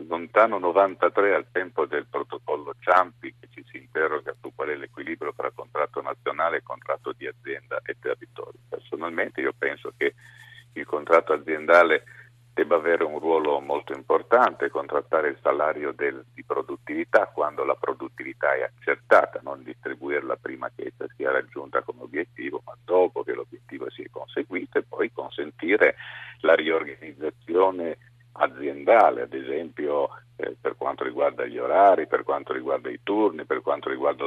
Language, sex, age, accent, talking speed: Italian, male, 50-69, native, 150 wpm